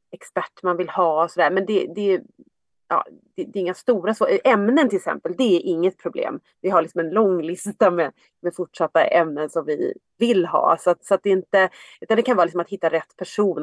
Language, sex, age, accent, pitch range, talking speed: Swedish, female, 30-49, native, 170-220 Hz, 230 wpm